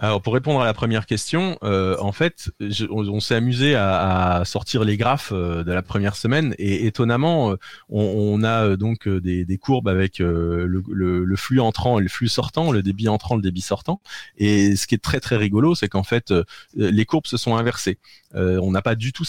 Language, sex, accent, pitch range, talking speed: French, male, French, 95-120 Hz, 235 wpm